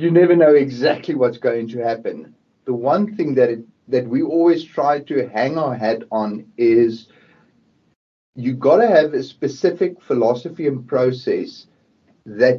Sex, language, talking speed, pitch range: male, English, 155 wpm, 120-180 Hz